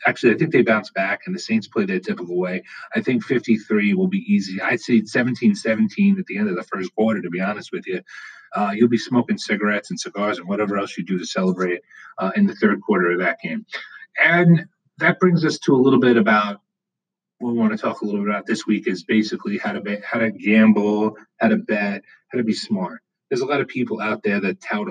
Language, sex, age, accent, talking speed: English, male, 30-49, American, 235 wpm